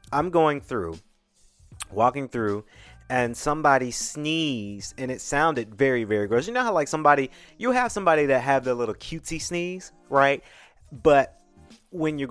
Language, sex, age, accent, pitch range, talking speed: English, male, 30-49, American, 115-150 Hz, 155 wpm